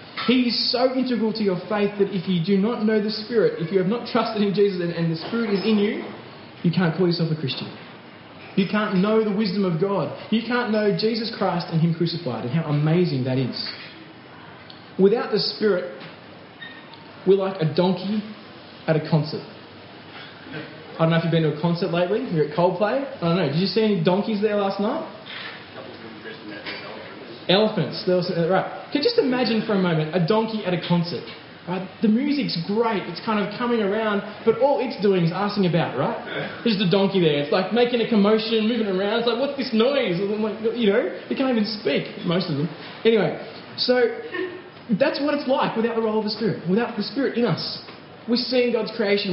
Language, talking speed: English, 200 wpm